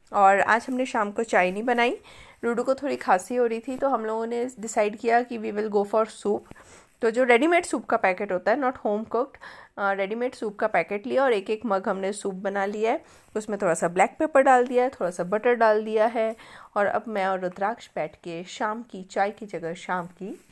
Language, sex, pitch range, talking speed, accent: Hindi, female, 195-245 Hz, 235 wpm, native